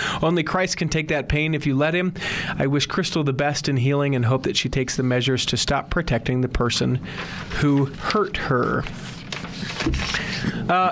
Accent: American